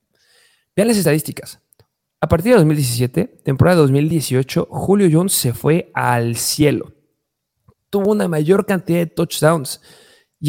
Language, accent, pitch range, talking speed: Spanish, Mexican, 150-210 Hz, 125 wpm